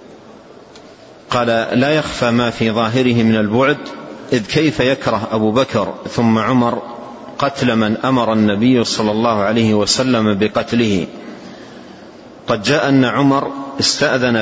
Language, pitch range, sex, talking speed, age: Arabic, 110-135 Hz, male, 120 wpm, 50-69